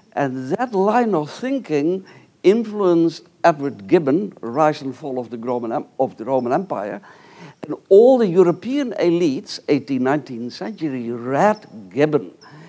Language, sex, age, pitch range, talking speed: English, male, 60-79, 145-185 Hz, 125 wpm